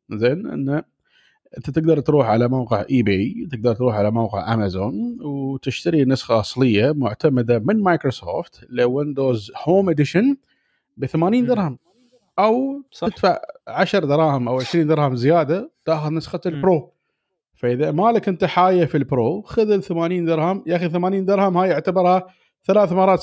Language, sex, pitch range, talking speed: Arabic, male, 130-195 Hz, 145 wpm